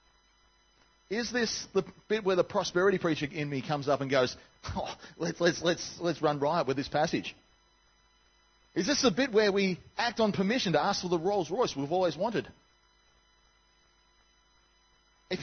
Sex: male